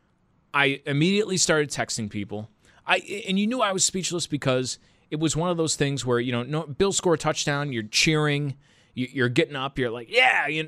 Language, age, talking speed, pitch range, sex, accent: English, 30-49, 190 wpm, 105-150 Hz, male, American